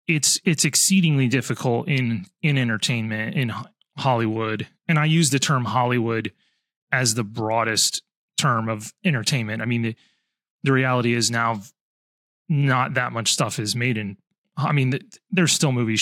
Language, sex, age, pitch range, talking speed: English, male, 30-49, 125-160 Hz, 155 wpm